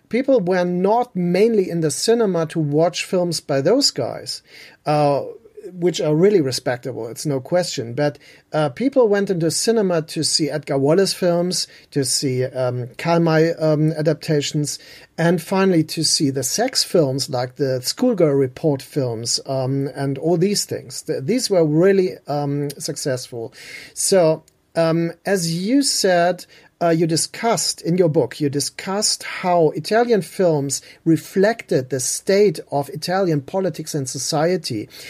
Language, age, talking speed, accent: German, 40-59, 145 wpm, German